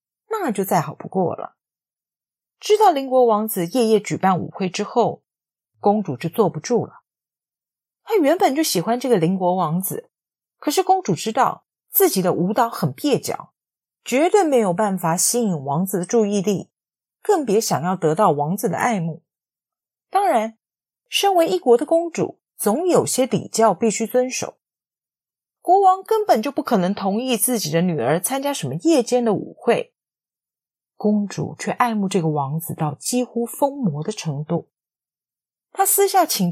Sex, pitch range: female, 180-275 Hz